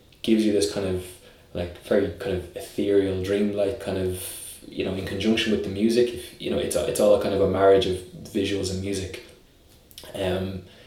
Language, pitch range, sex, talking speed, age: English, 95-115 Hz, male, 205 wpm, 20-39